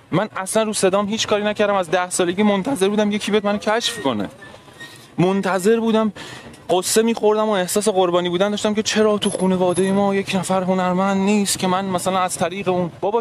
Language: Persian